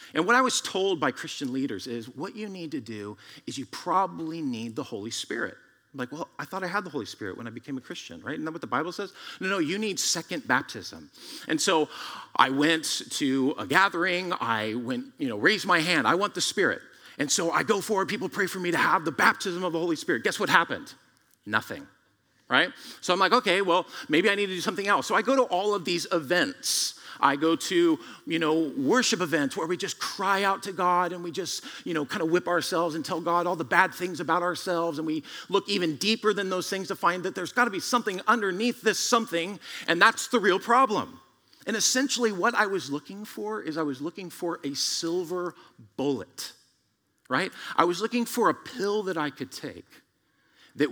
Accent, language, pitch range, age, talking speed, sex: American, English, 150-205 Hz, 40-59, 225 wpm, male